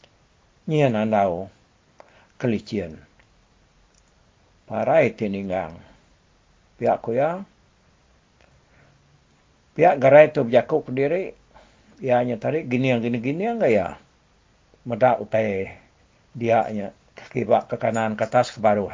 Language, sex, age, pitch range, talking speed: English, male, 60-79, 95-120 Hz, 95 wpm